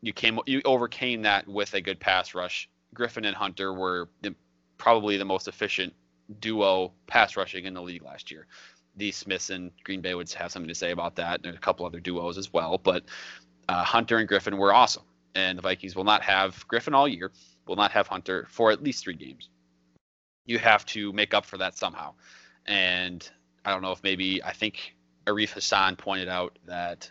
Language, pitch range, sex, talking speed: English, 80-105 Hz, male, 205 wpm